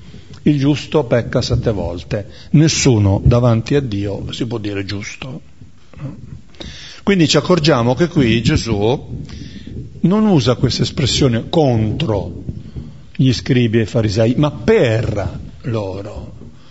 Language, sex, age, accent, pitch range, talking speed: Italian, male, 50-69, native, 110-145 Hz, 115 wpm